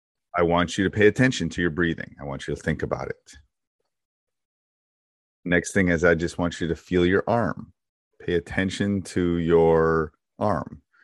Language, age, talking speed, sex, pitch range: English, 30-49, 175 wpm, male, 75-90 Hz